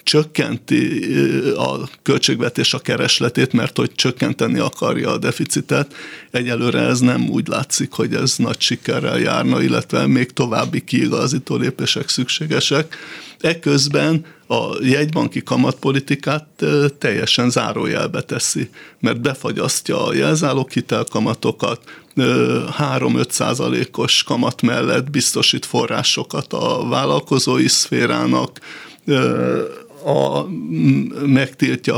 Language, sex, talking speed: Hungarian, male, 95 wpm